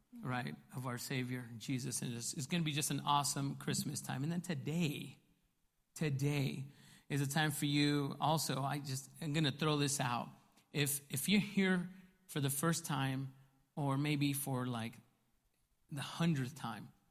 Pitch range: 135-170 Hz